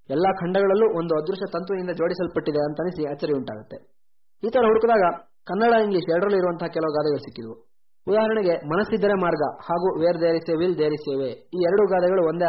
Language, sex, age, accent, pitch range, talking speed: Kannada, male, 20-39, native, 155-190 Hz, 155 wpm